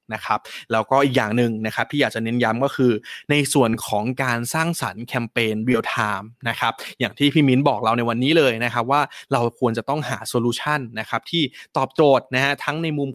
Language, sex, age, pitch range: Thai, male, 20-39, 120-145 Hz